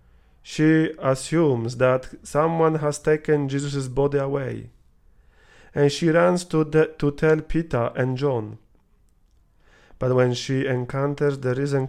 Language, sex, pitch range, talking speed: English, male, 120-155 Hz, 125 wpm